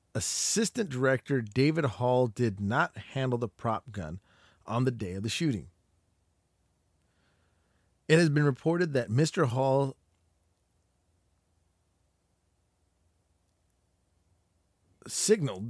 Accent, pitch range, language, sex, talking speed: American, 90-140 Hz, English, male, 90 wpm